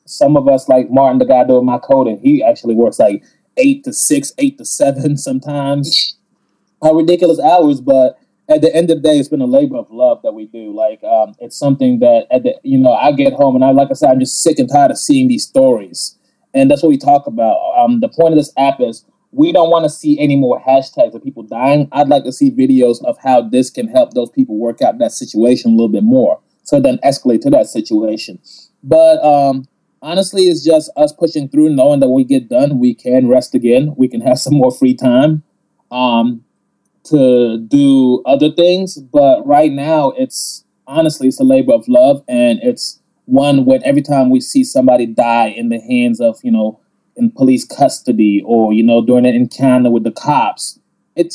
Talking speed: 215 wpm